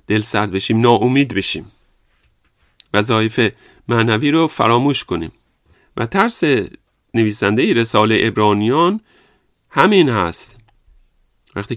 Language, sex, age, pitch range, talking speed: Persian, male, 40-59, 105-130 Hz, 95 wpm